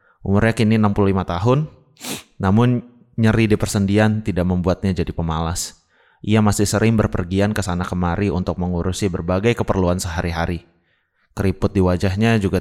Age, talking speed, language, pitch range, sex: 20-39, 135 wpm, Indonesian, 90-110 Hz, male